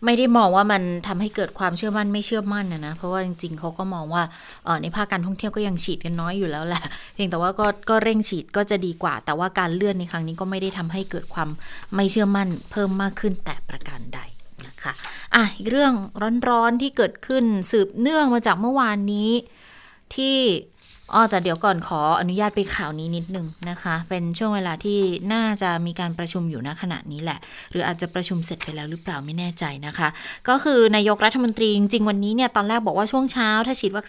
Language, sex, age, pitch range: Thai, female, 20-39, 170-210 Hz